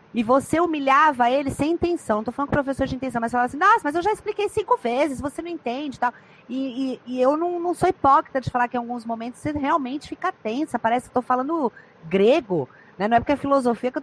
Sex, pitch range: female, 230-300 Hz